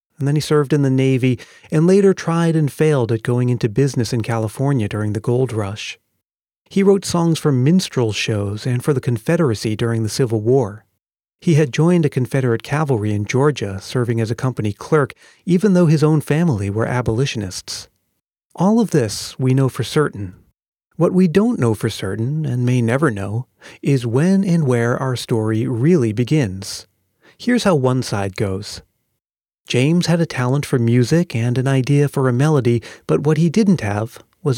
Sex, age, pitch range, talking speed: male, 40-59, 115-150 Hz, 180 wpm